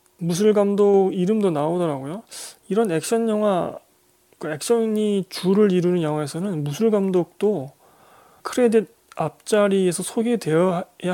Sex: male